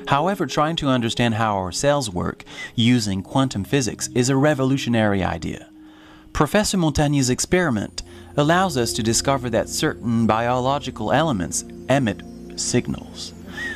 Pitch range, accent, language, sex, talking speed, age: 105-145 Hz, American, English, male, 120 wpm, 30-49